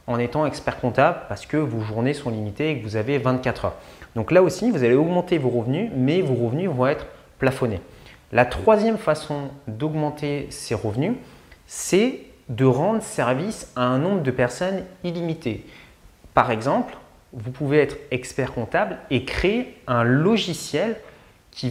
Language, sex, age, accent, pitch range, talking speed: French, male, 30-49, French, 125-185 Hz, 160 wpm